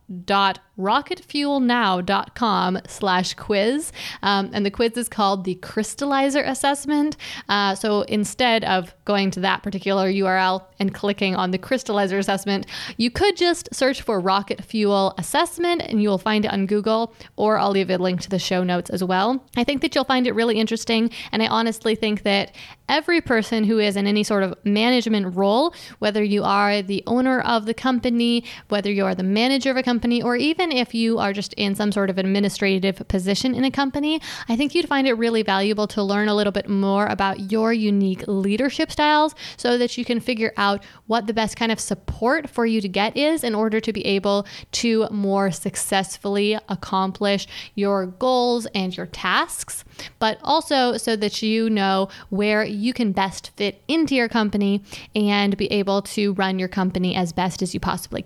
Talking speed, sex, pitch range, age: 185 wpm, female, 195-240 Hz, 20-39